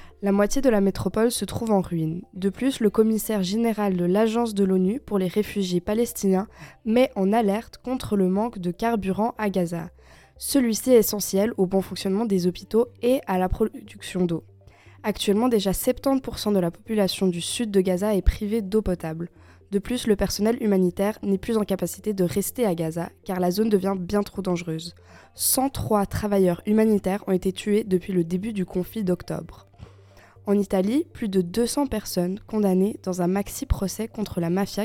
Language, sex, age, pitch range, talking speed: French, female, 20-39, 185-220 Hz, 180 wpm